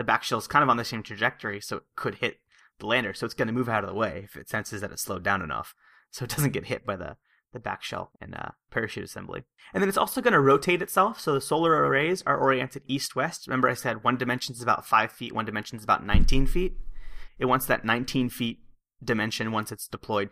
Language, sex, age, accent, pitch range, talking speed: English, male, 30-49, American, 110-145 Hz, 250 wpm